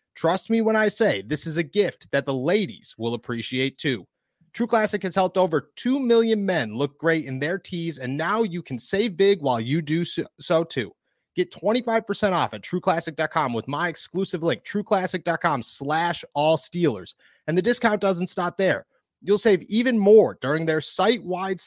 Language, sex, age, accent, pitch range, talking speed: English, male, 30-49, American, 140-200 Hz, 180 wpm